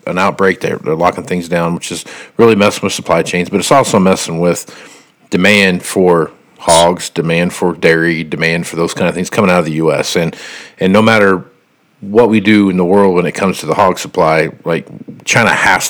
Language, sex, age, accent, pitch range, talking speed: English, male, 50-69, American, 90-95 Hz, 210 wpm